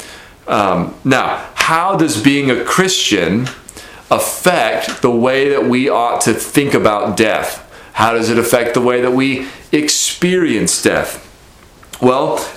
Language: English